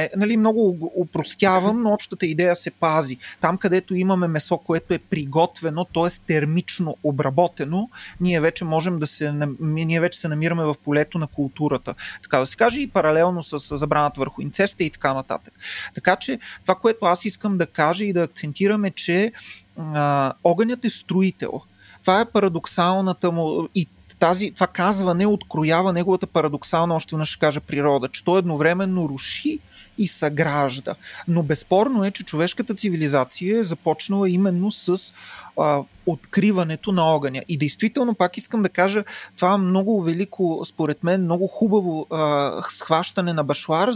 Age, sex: 30-49, male